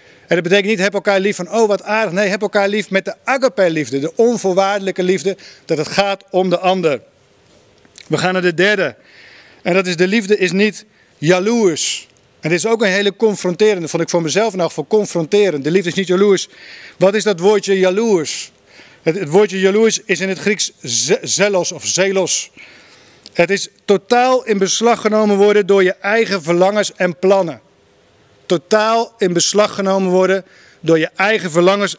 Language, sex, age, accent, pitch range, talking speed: Dutch, male, 50-69, Dutch, 180-205 Hz, 185 wpm